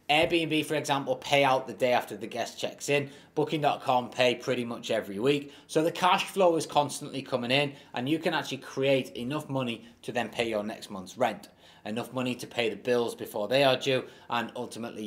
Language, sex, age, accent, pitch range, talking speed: English, male, 20-39, British, 120-155 Hz, 205 wpm